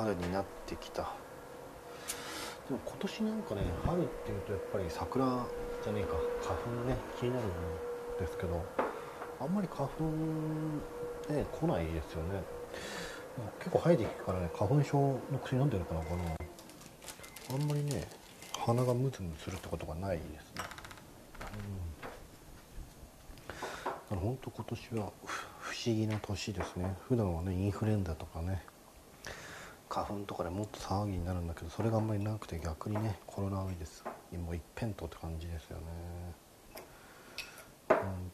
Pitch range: 85-125 Hz